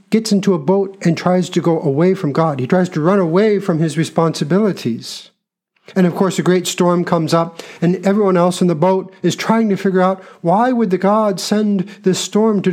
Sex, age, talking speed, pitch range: male, 50-69, 215 wpm, 160-200 Hz